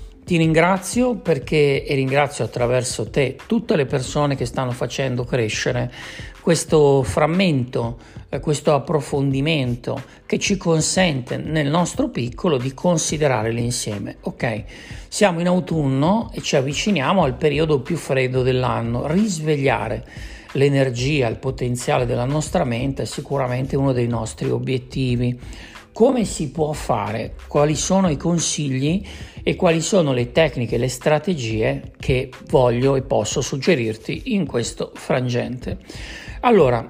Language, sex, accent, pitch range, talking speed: Italian, male, native, 125-170 Hz, 125 wpm